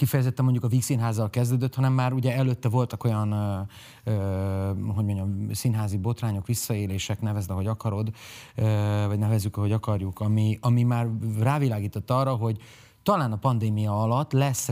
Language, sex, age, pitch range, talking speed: Hungarian, male, 30-49, 100-125 Hz, 155 wpm